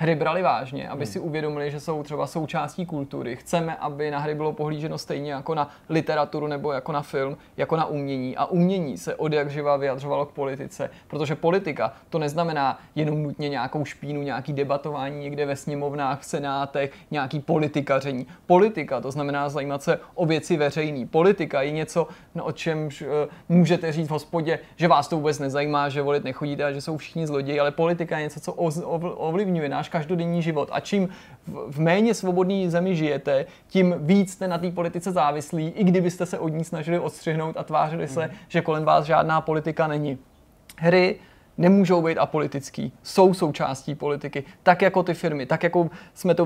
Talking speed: 180 wpm